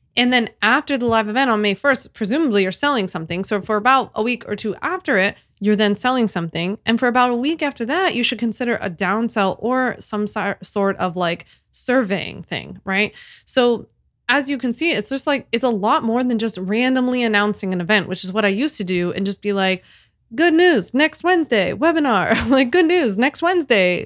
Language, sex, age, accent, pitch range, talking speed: English, female, 20-39, American, 190-245 Hz, 210 wpm